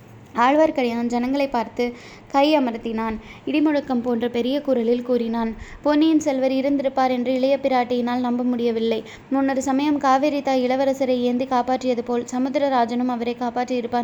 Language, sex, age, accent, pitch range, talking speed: Tamil, female, 20-39, native, 235-265 Hz, 120 wpm